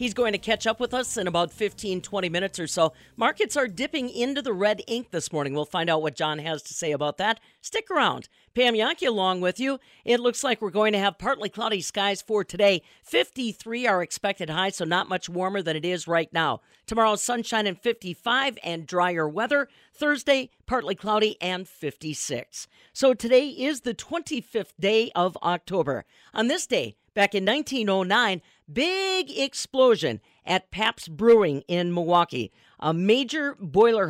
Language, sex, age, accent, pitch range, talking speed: English, female, 50-69, American, 180-245 Hz, 180 wpm